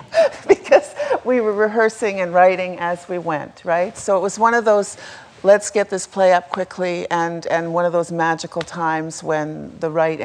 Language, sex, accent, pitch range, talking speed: English, female, American, 160-195 Hz, 190 wpm